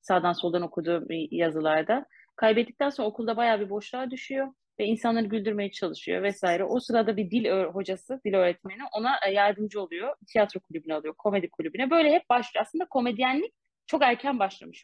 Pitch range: 190-260 Hz